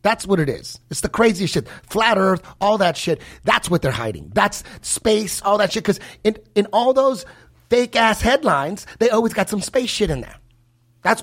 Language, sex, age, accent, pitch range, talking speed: English, male, 30-49, American, 150-210 Hz, 205 wpm